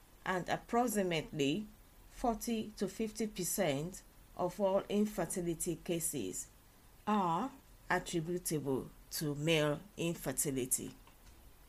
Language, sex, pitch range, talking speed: English, female, 140-180 Hz, 70 wpm